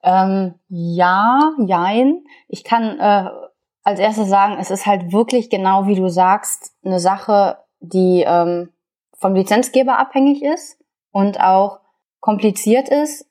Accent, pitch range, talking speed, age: German, 175-220 Hz, 130 wpm, 20-39